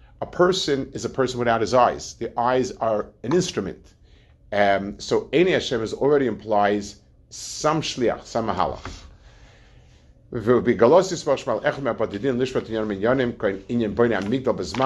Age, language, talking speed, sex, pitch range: 50-69, English, 115 wpm, male, 100-135 Hz